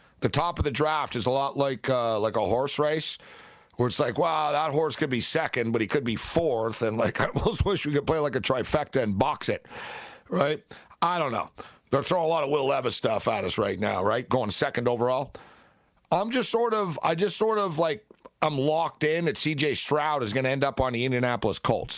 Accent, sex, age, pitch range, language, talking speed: American, male, 50-69, 135-170 Hz, English, 235 wpm